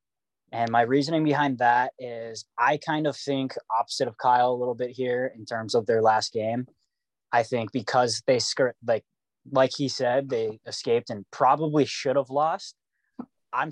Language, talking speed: English, 180 wpm